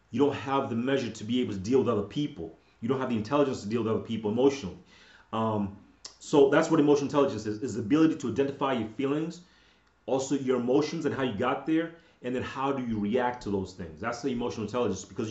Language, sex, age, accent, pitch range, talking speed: English, male, 30-49, American, 110-135 Hz, 235 wpm